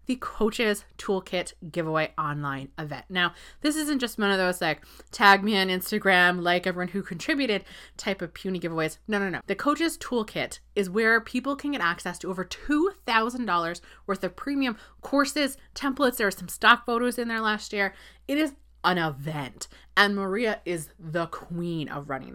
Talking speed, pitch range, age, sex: 175 wpm, 175-240 Hz, 20-39, female